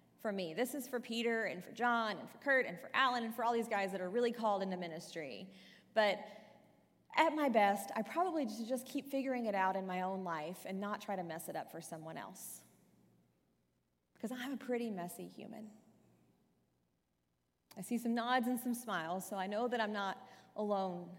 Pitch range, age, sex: 180-240 Hz, 30-49, female